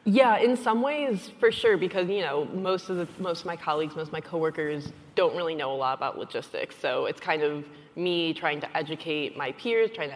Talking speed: 230 wpm